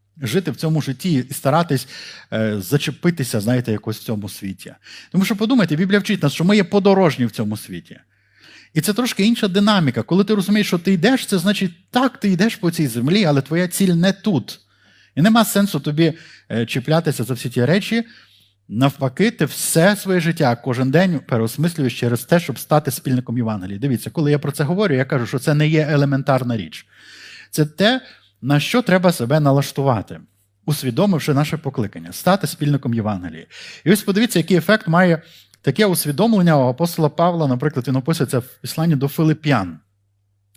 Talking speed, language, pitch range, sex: 175 wpm, Ukrainian, 120-180 Hz, male